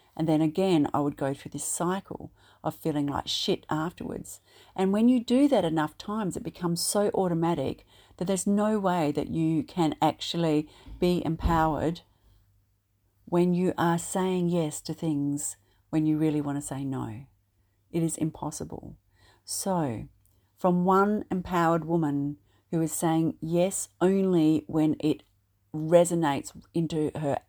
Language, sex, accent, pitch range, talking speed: English, female, Australian, 145-180 Hz, 145 wpm